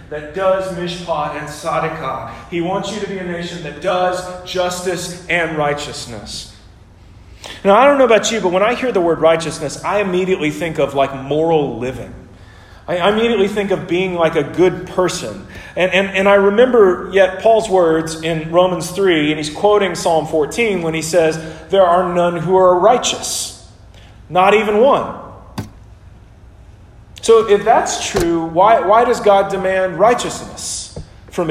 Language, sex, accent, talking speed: English, male, American, 160 wpm